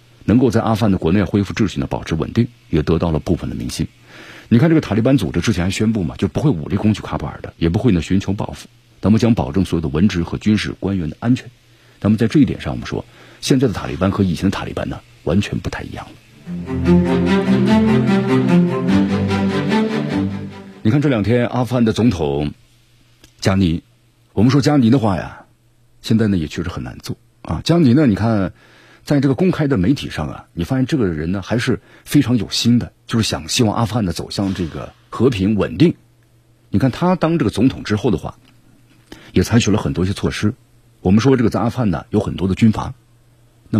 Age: 50-69